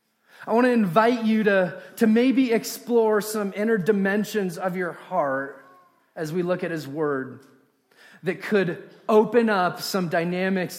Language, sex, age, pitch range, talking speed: English, male, 30-49, 175-225 Hz, 150 wpm